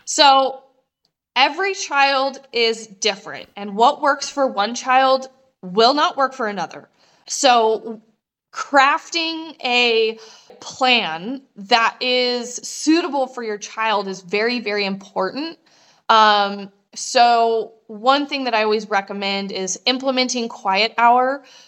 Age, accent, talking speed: 20-39, American, 115 wpm